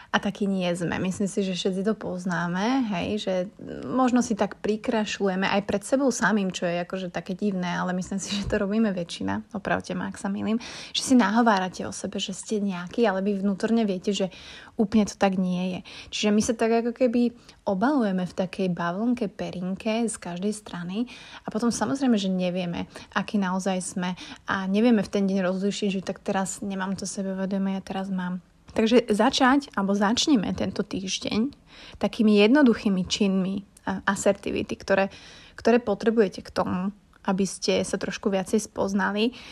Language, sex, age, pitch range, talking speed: Slovak, female, 30-49, 190-230 Hz, 175 wpm